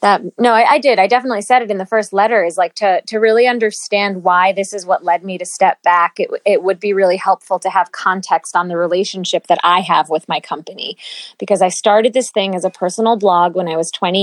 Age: 20-39